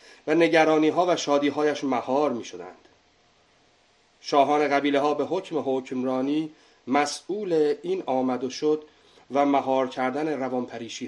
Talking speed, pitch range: 125 wpm, 130-160 Hz